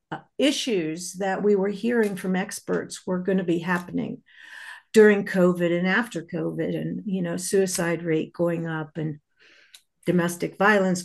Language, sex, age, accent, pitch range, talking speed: English, female, 50-69, American, 175-215 Hz, 145 wpm